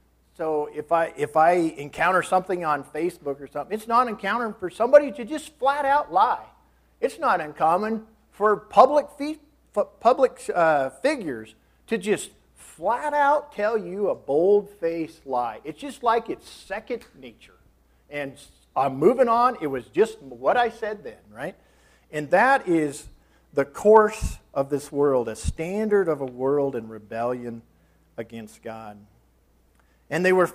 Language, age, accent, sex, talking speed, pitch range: English, 50-69, American, male, 155 wpm, 140-215 Hz